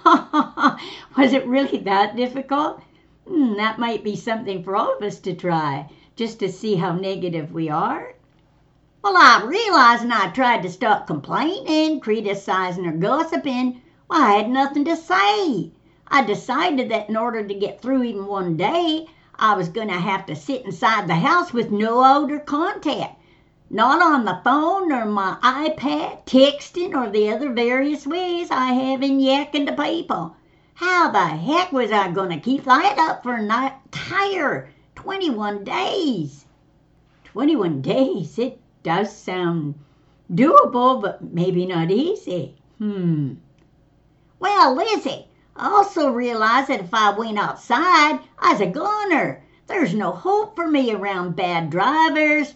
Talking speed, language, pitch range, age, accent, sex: 150 wpm, English, 195-300 Hz, 60-79, American, female